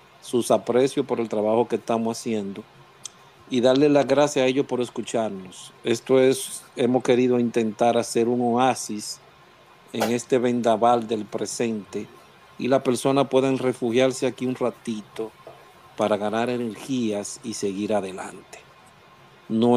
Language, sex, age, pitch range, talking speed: Spanish, male, 50-69, 110-130 Hz, 135 wpm